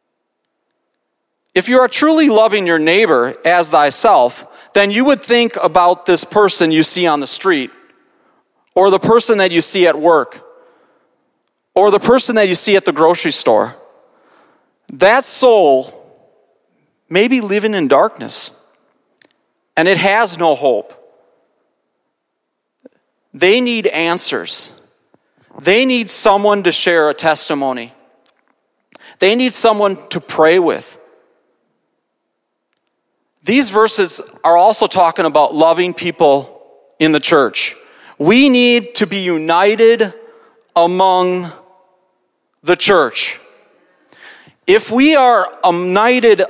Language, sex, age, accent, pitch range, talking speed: English, male, 40-59, American, 165-240 Hz, 115 wpm